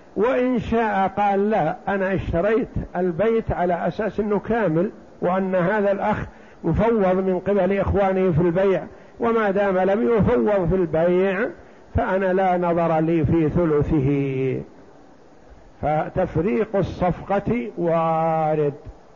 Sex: male